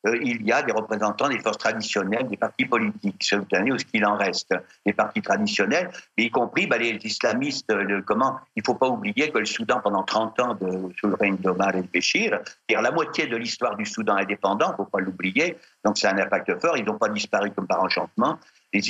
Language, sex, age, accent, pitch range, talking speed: French, male, 60-79, French, 95-115 Hz, 225 wpm